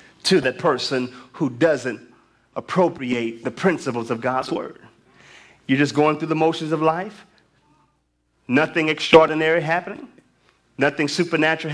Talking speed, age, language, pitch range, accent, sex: 125 wpm, 30-49, English, 130-180 Hz, American, male